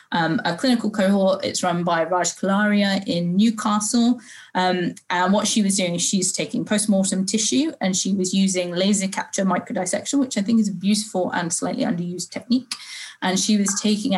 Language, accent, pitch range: English, British, 180-215 Hz